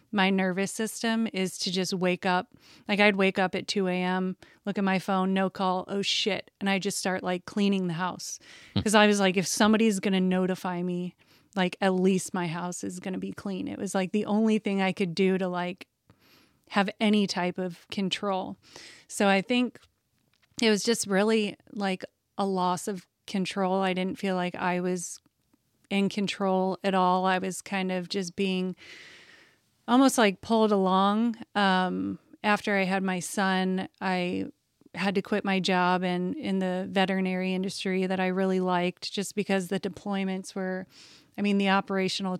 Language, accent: English, American